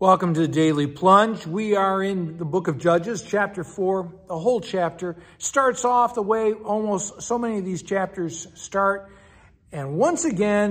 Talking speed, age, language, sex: 175 wpm, 60-79, English, male